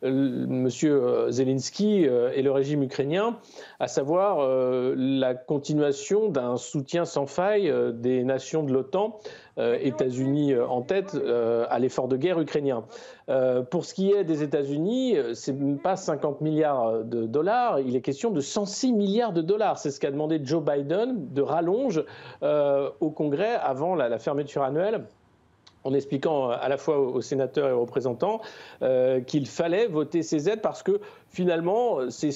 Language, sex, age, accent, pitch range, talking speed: French, male, 50-69, French, 135-190 Hz, 150 wpm